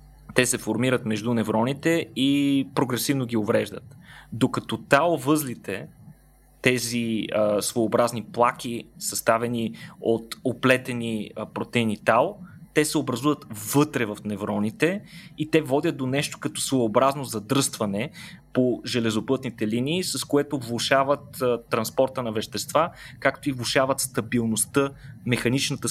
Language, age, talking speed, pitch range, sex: Bulgarian, 20-39, 120 wpm, 115-145 Hz, male